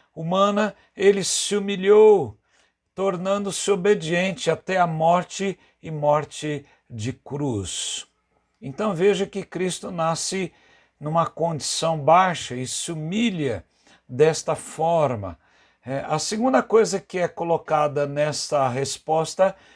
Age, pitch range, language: 60-79, 160-195 Hz, Portuguese